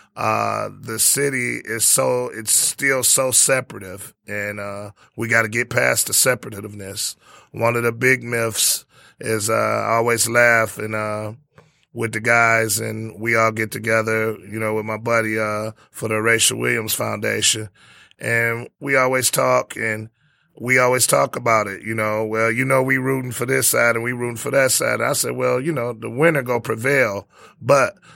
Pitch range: 110-130 Hz